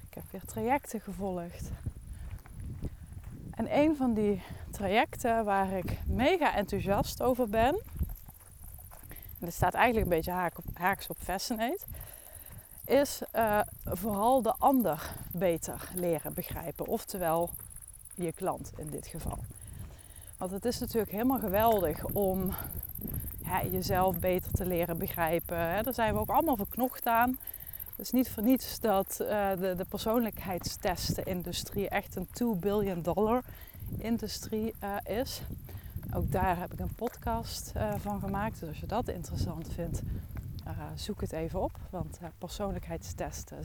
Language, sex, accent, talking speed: Dutch, female, Dutch, 140 wpm